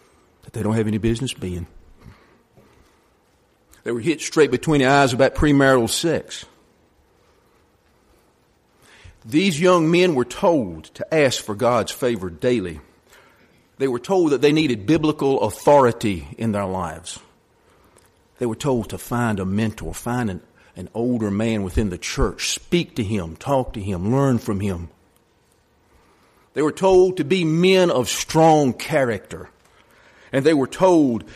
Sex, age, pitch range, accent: male, 50-69, 90-130 Hz, American